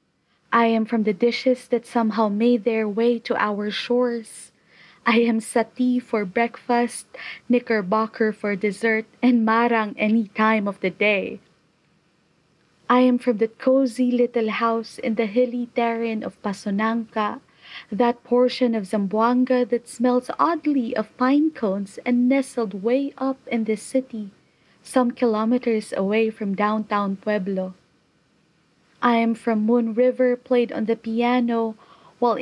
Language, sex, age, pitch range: English, female, 20-39, 215-245 Hz